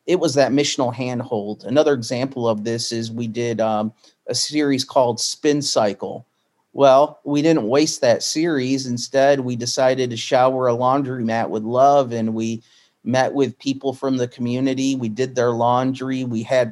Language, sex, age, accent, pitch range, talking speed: English, male, 40-59, American, 115-135 Hz, 170 wpm